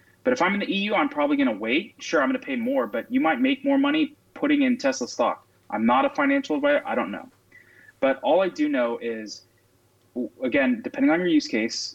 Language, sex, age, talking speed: English, male, 20-39, 235 wpm